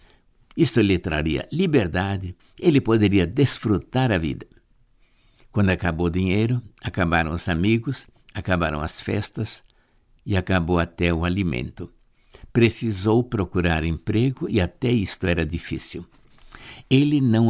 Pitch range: 85-115 Hz